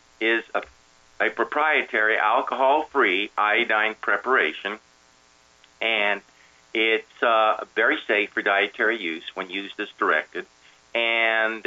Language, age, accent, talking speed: English, 50-69, American, 105 wpm